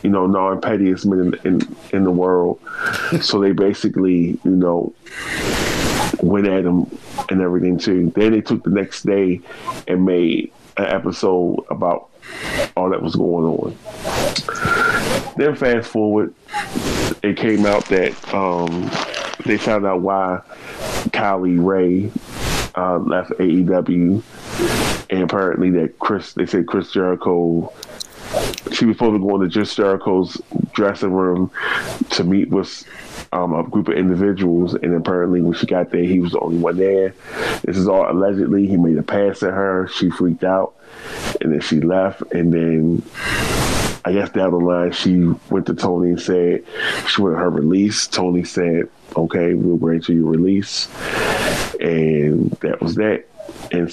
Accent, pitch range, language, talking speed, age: American, 85-100 Hz, English, 150 wpm, 20-39